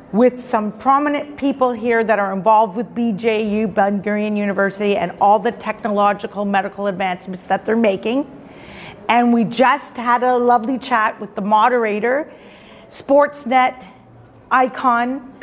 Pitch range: 210-260 Hz